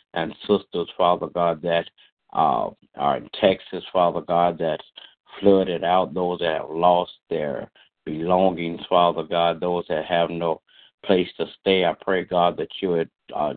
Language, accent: English, American